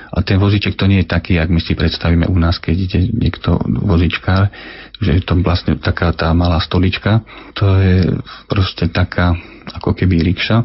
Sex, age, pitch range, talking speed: male, 40-59, 90-100 Hz, 180 wpm